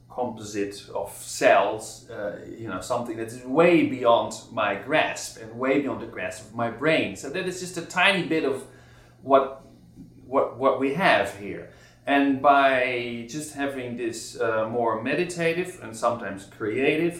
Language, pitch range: Chinese, 105-135 Hz